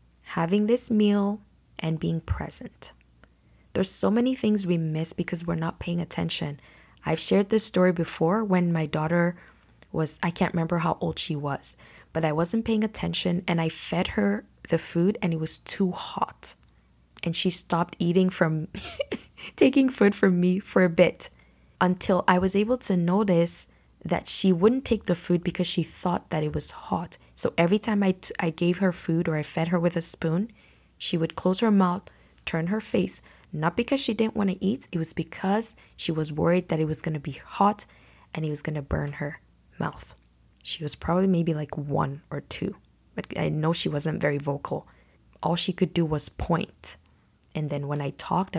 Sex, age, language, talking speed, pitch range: female, 20-39, English, 195 wpm, 155-185 Hz